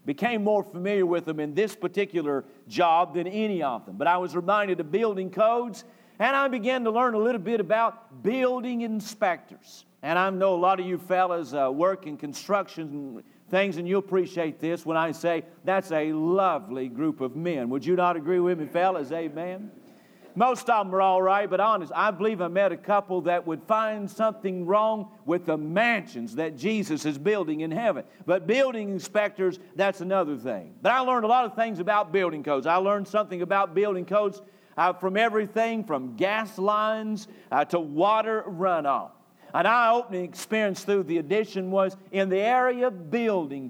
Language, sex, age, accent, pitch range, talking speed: English, male, 50-69, American, 175-215 Hz, 190 wpm